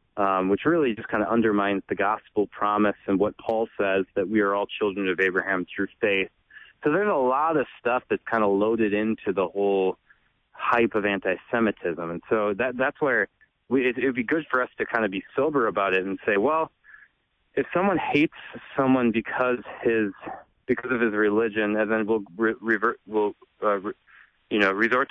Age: 20-39